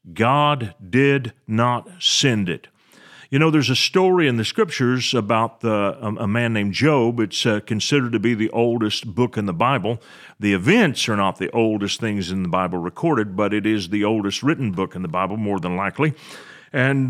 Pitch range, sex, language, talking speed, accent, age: 110-145 Hz, male, English, 190 wpm, American, 40-59